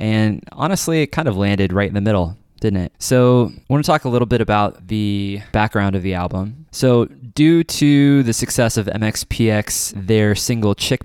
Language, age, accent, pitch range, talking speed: English, 20-39, American, 100-115 Hz, 195 wpm